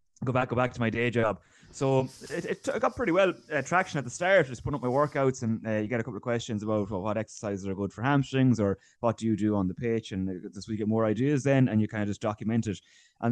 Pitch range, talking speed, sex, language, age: 105-130 Hz, 290 wpm, male, English, 20-39